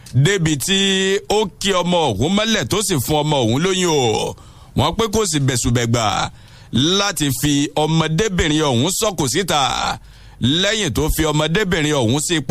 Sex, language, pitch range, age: male, English, 135-195 Hz, 60-79